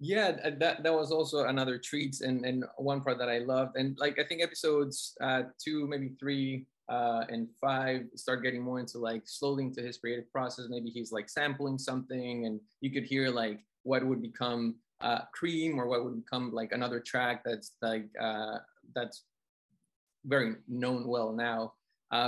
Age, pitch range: 20-39, 115-135 Hz